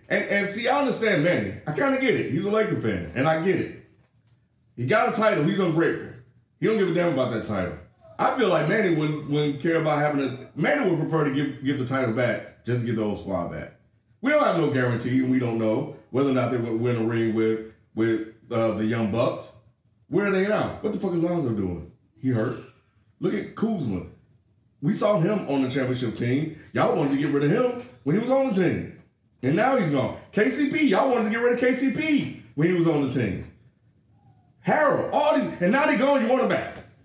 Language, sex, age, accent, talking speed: English, male, 40-59, American, 235 wpm